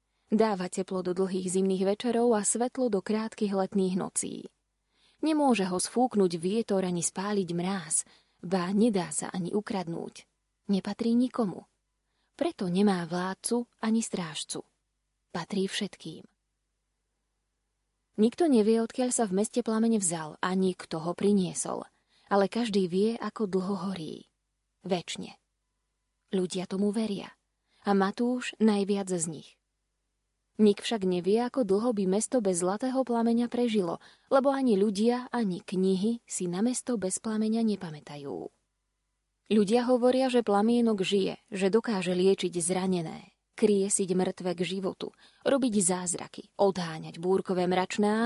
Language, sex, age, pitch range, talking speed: Slovak, female, 20-39, 185-225 Hz, 125 wpm